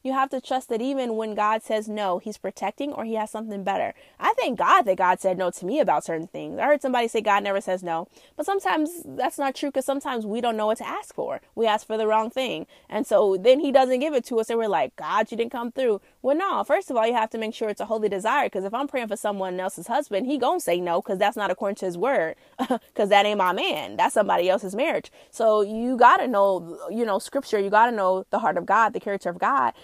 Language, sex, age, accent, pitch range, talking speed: English, female, 20-39, American, 190-260 Hz, 275 wpm